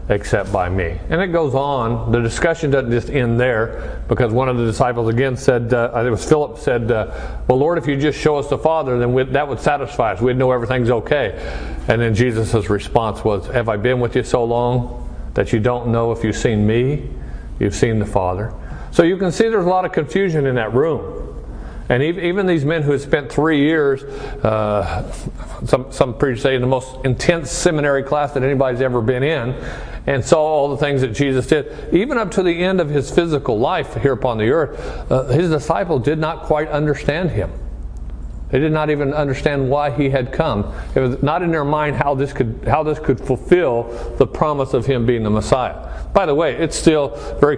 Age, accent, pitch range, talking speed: 50-69, American, 120-145 Hz, 215 wpm